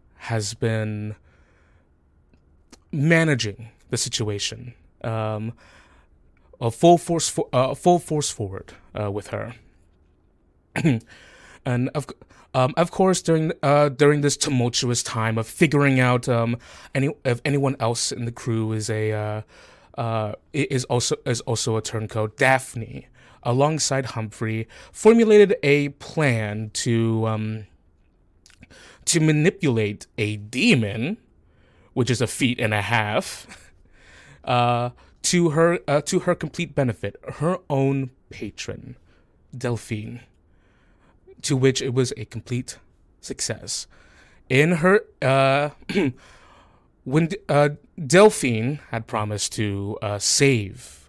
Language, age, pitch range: English, 20-39, 105-140 Hz